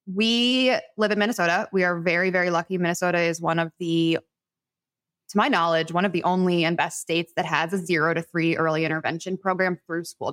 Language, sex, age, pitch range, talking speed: English, female, 20-39, 165-190 Hz, 205 wpm